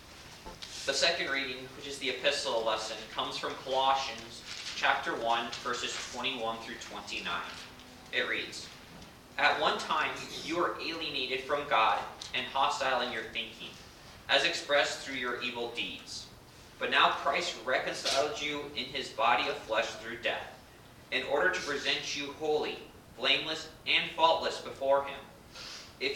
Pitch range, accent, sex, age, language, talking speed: 120-140 Hz, American, male, 30-49, English, 140 wpm